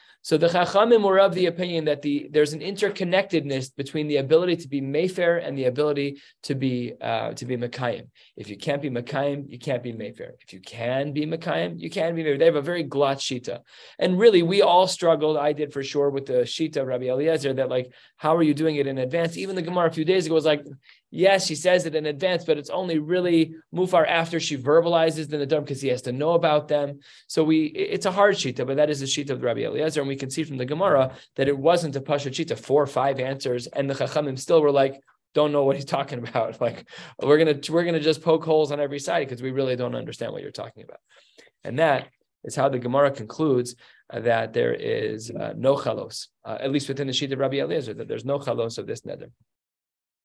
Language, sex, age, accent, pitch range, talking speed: English, male, 20-39, American, 135-165 Hz, 240 wpm